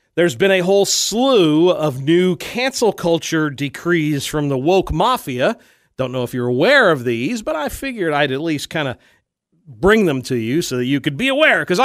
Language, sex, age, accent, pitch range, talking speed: English, male, 40-59, American, 140-195 Hz, 205 wpm